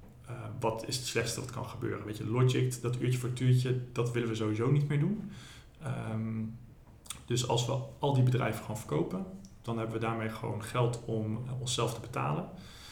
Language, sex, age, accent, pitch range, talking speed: Dutch, male, 40-59, Dutch, 110-125 Hz, 190 wpm